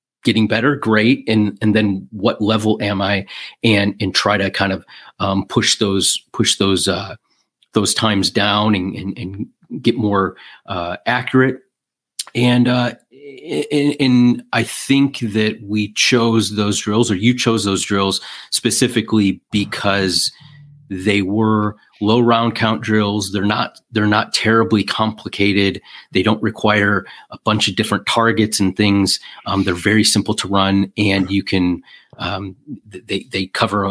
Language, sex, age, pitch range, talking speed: English, male, 30-49, 95-115 Hz, 150 wpm